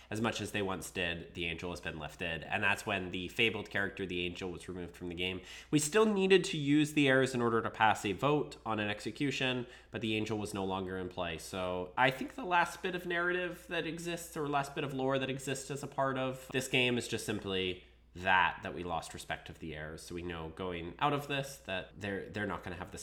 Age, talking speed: 20-39, 255 wpm